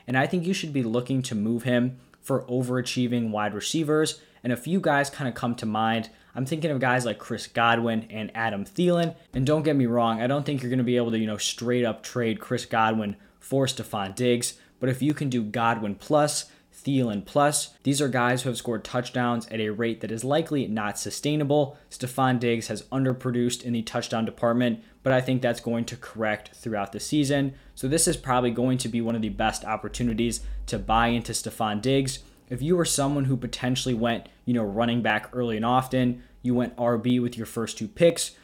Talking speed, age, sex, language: 215 wpm, 10-29, male, English